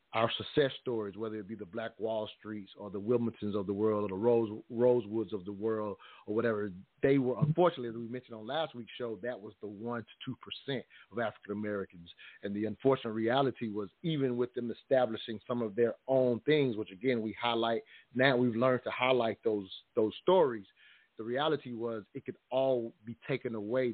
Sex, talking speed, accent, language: male, 205 wpm, American, English